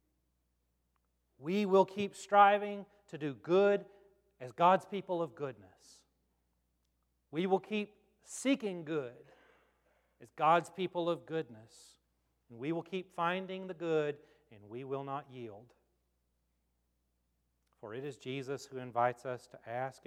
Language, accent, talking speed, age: English, American, 130 wpm, 40-59